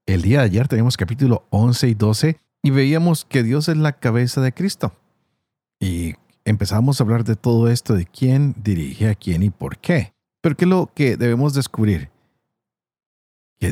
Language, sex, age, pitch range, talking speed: Spanish, male, 50-69, 105-145 Hz, 180 wpm